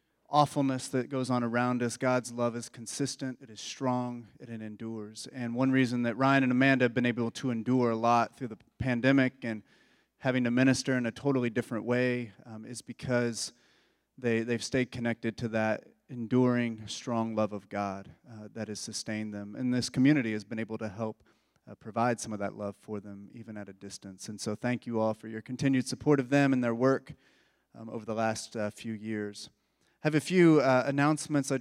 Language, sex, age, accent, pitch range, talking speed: English, male, 30-49, American, 115-135 Hz, 205 wpm